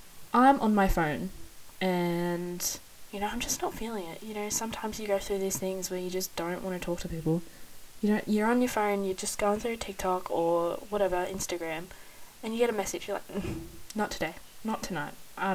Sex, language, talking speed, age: female, English, 210 wpm, 10-29